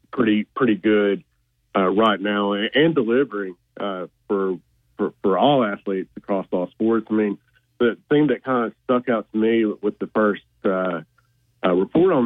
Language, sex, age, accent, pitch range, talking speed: English, male, 40-59, American, 95-115 Hz, 175 wpm